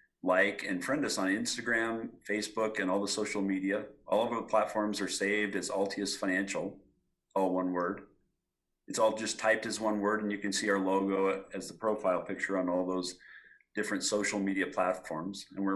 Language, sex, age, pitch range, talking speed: English, male, 40-59, 95-105 Hz, 190 wpm